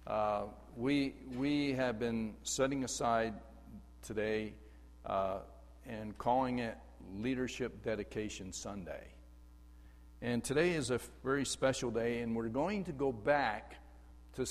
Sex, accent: male, American